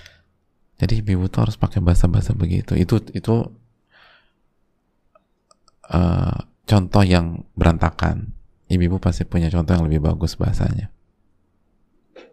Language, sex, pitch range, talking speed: Indonesian, male, 85-100 Hz, 100 wpm